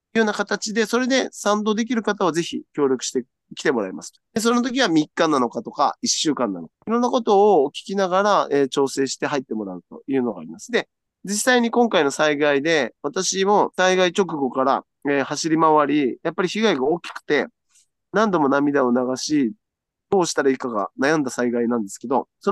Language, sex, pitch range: Japanese, male, 140-225 Hz